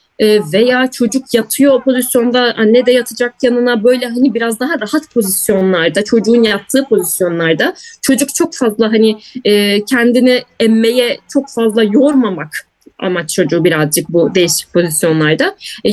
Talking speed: 130 wpm